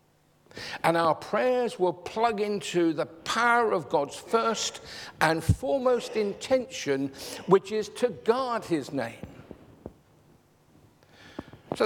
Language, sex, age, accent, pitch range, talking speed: English, male, 50-69, British, 145-210 Hz, 105 wpm